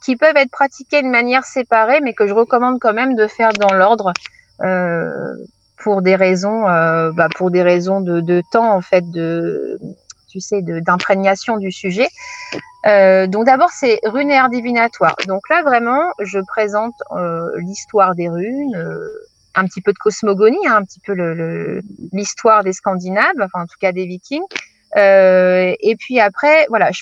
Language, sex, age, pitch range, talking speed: French, female, 30-49, 185-255 Hz, 160 wpm